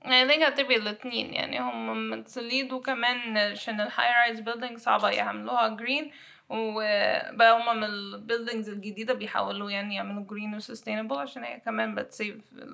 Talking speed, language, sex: 120 wpm, Arabic, female